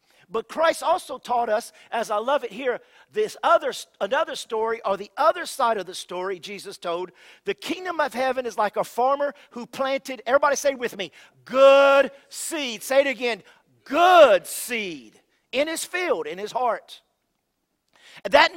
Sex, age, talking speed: male, 50-69, 165 wpm